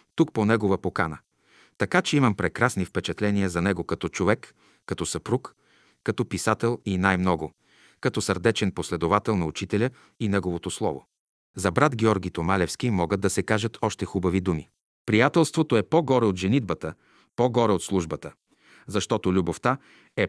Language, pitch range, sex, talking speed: Bulgarian, 95-125 Hz, male, 145 wpm